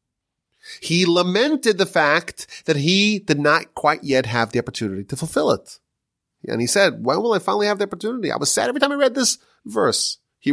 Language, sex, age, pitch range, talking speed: English, male, 30-49, 130-205 Hz, 205 wpm